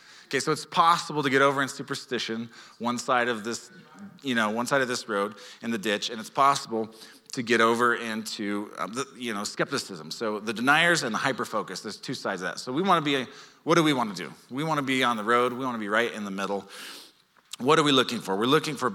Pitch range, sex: 115-145 Hz, male